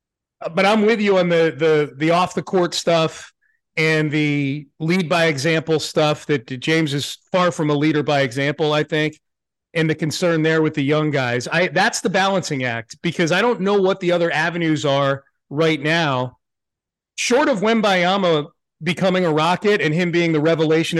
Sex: male